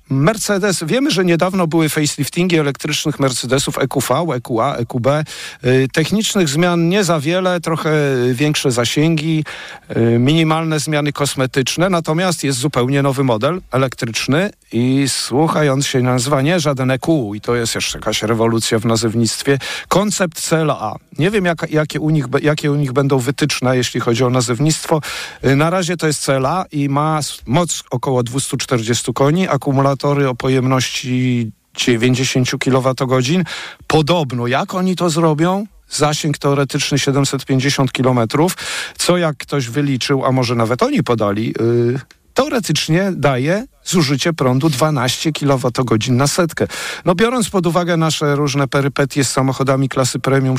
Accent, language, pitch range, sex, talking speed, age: native, Polish, 130-160 Hz, male, 130 wpm, 50-69